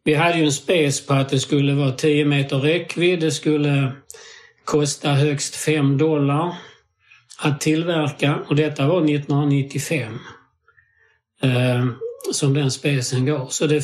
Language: Swedish